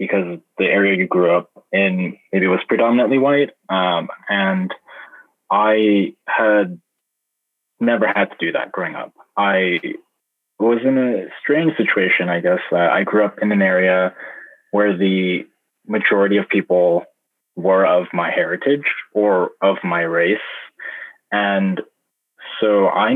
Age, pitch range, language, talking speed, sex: 20-39, 90-110 Hz, English, 135 wpm, male